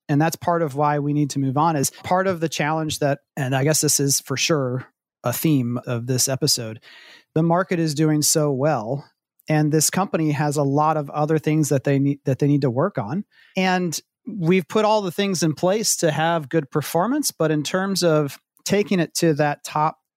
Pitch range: 135-165 Hz